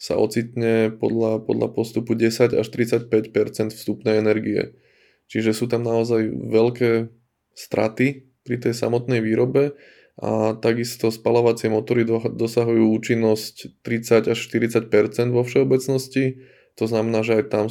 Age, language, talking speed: 20-39, Slovak, 120 wpm